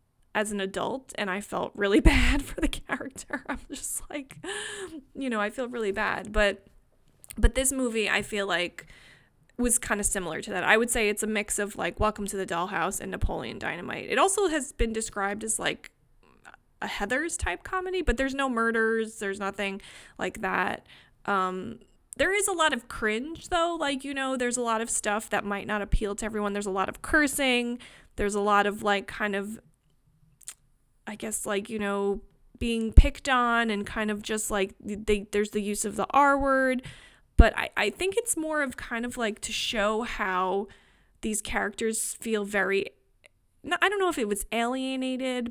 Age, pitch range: 20-39, 200-245 Hz